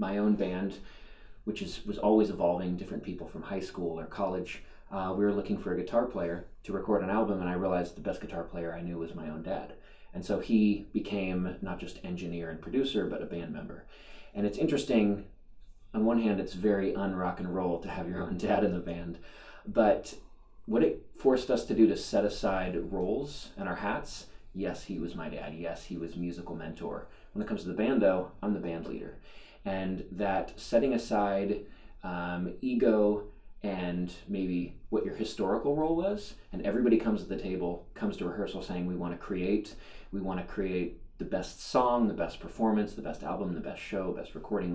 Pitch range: 85-105 Hz